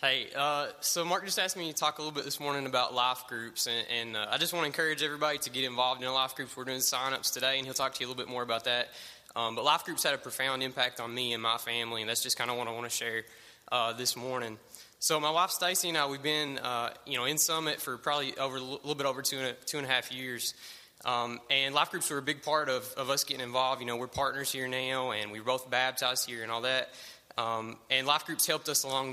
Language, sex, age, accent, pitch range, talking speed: English, male, 20-39, American, 120-140 Hz, 280 wpm